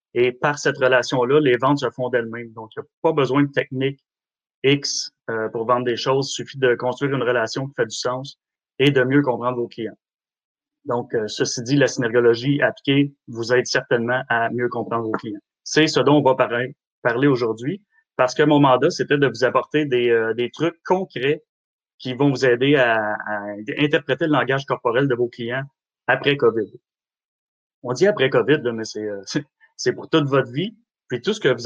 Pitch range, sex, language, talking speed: 120-145 Hz, male, French, 195 wpm